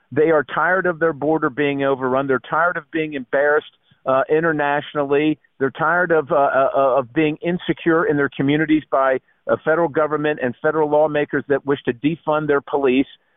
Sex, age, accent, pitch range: male, 50-69, American, 140-165 Hz